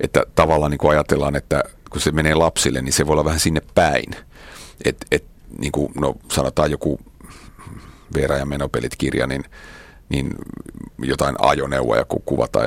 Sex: male